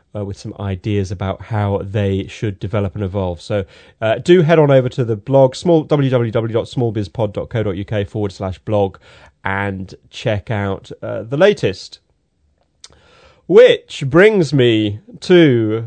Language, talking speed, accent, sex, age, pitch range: English, 130 wpm, British, male, 30-49, 110-140 Hz